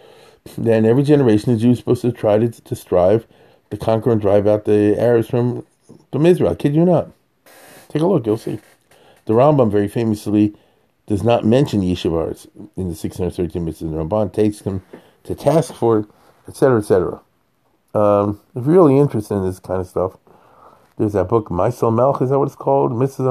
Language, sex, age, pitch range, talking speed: English, male, 50-69, 105-135 Hz, 180 wpm